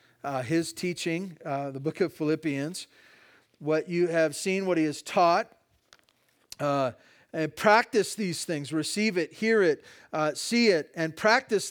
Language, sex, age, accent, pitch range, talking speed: English, male, 50-69, American, 155-220 Hz, 155 wpm